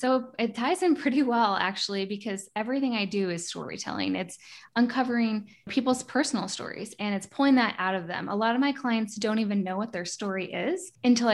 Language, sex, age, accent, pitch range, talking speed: English, female, 10-29, American, 185-220 Hz, 200 wpm